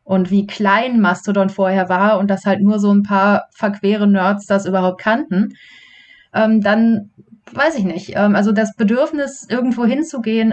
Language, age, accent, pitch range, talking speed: German, 30-49, German, 195-225 Hz, 155 wpm